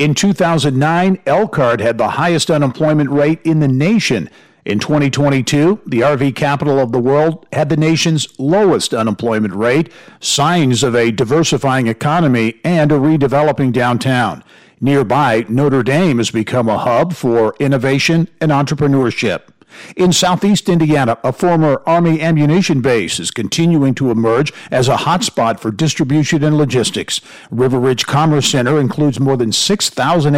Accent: American